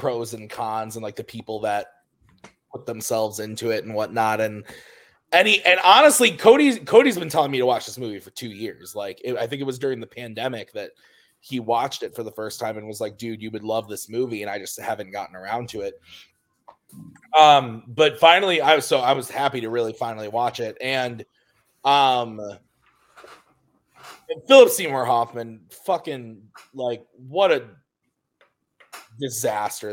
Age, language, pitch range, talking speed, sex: 20-39, English, 110-150 Hz, 175 wpm, male